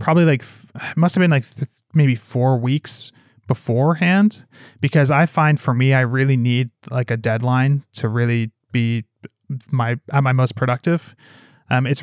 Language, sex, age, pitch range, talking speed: English, male, 30-49, 115-140 Hz, 160 wpm